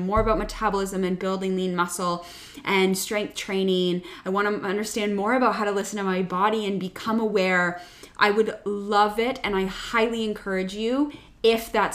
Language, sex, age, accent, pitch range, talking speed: English, female, 20-39, American, 190-215 Hz, 180 wpm